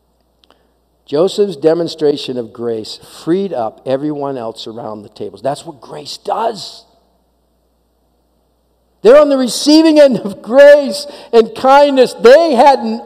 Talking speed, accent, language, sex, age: 120 wpm, American, English, male, 50-69